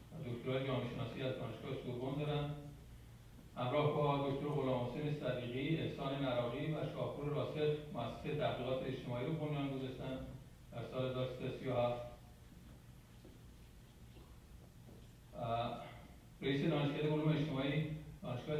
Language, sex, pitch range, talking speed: Persian, male, 125-150 Hz, 100 wpm